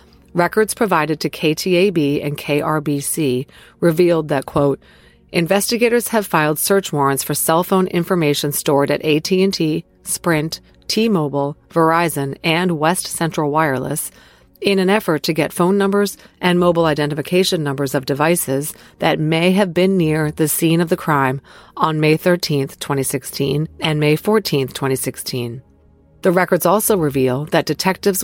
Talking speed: 140 wpm